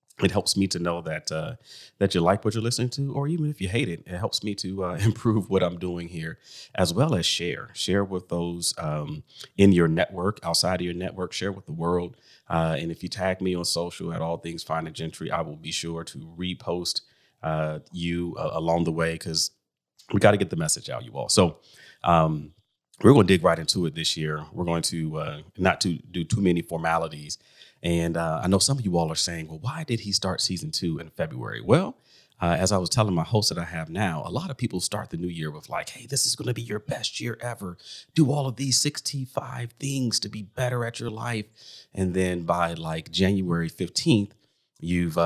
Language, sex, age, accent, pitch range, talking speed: English, male, 30-49, American, 85-110 Hz, 235 wpm